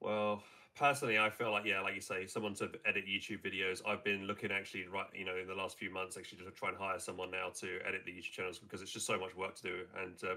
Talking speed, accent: 280 wpm, British